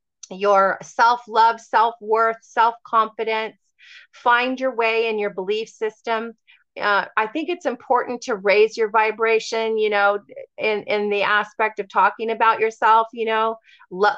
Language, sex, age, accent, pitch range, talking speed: English, female, 30-49, American, 200-230 Hz, 140 wpm